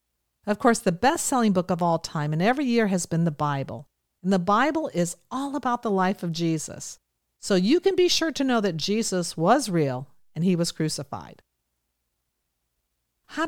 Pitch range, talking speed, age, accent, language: 155-230 Hz, 185 wpm, 50-69, American, English